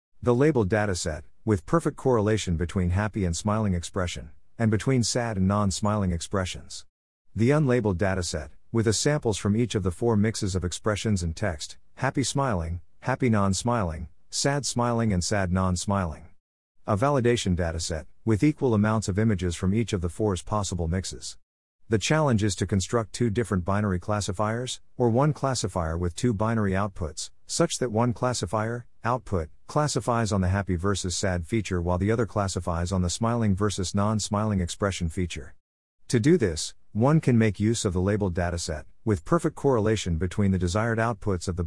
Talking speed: 160 wpm